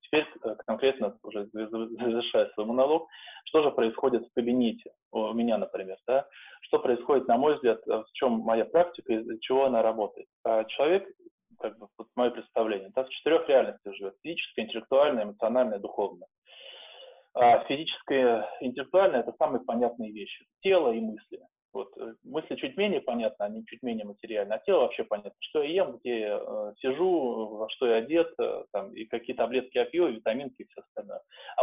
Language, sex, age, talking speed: Russian, male, 20-39, 170 wpm